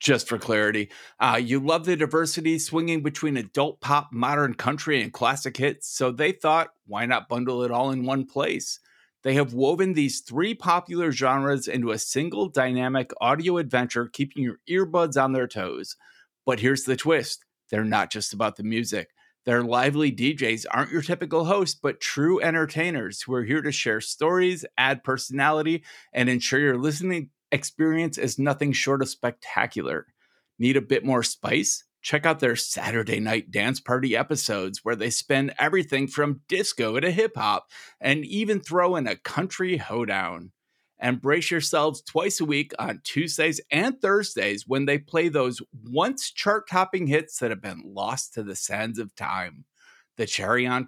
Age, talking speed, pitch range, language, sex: 30-49, 170 wpm, 125-160 Hz, English, male